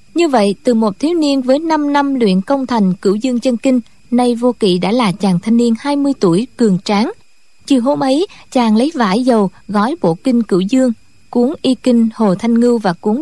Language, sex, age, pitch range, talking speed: Vietnamese, female, 20-39, 210-275 Hz, 220 wpm